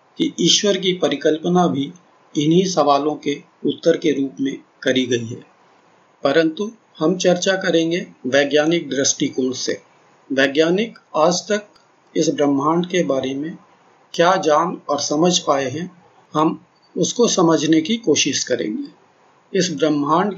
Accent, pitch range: native, 145-180 Hz